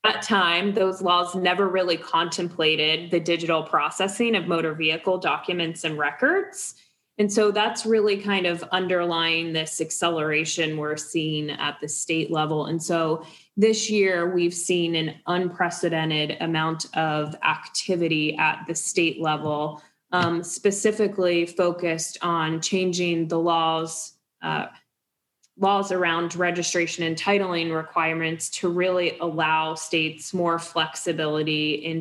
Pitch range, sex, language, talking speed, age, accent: 160-190 Hz, female, English, 125 wpm, 20-39, American